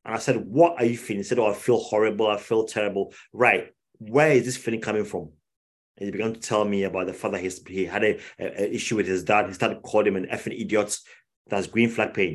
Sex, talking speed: male, 250 wpm